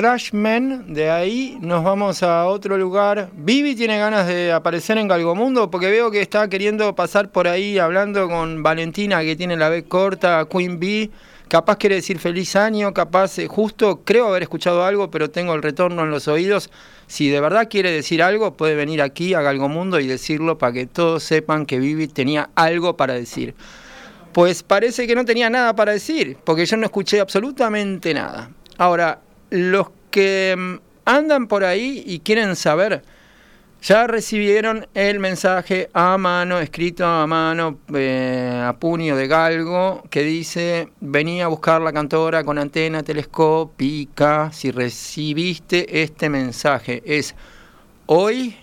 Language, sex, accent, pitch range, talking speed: Spanish, male, Argentinian, 155-200 Hz, 155 wpm